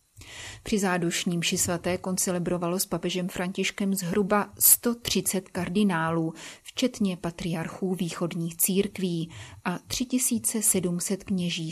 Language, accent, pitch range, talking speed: Czech, native, 175-195 Hz, 85 wpm